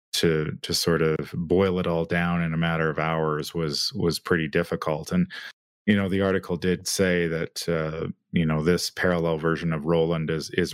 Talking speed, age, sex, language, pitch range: 195 wpm, 30-49, male, English, 80-90 Hz